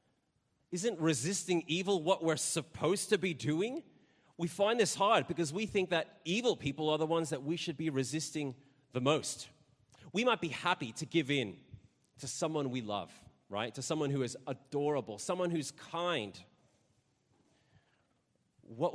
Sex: male